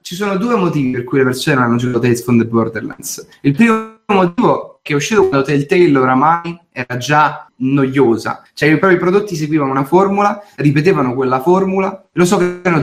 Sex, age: male, 20-39